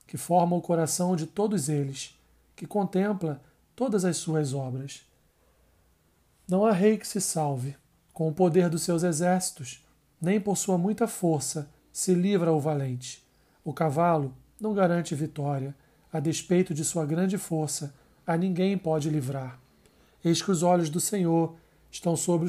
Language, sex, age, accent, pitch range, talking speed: Portuguese, male, 40-59, Brazilian, 145-180 Hz, 150 wpm